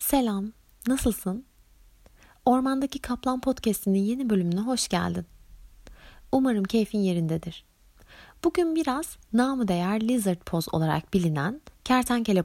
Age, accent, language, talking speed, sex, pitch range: 30-49, native, Turkish, 100 wpm, female, 170-255 Hz